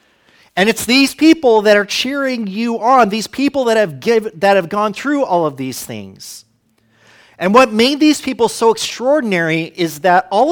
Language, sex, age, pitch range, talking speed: English, male, 40-59, 185-245 Hz, 185 wpm